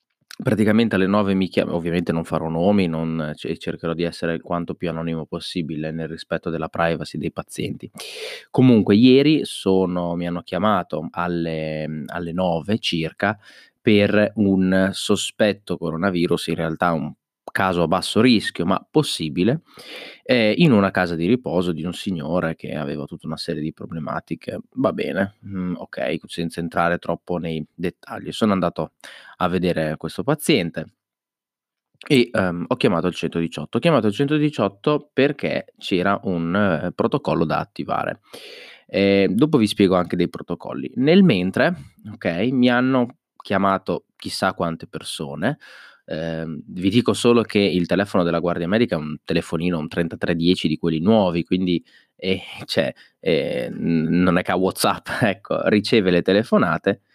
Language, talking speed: Italian, 145 wpm